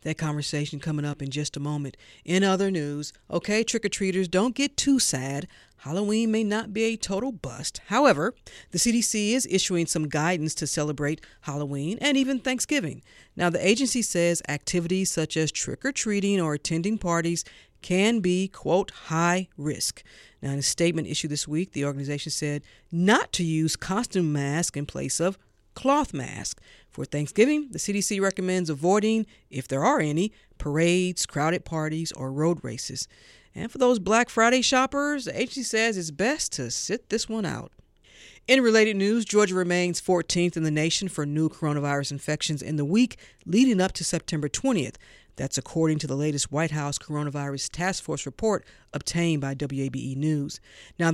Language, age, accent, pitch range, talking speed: English, 40-59, American, 150-205 Hz, 170 wpm